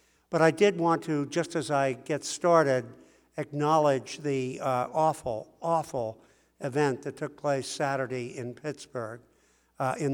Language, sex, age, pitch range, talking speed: English, male, 60-79, 130-150 Hz, 140 wpm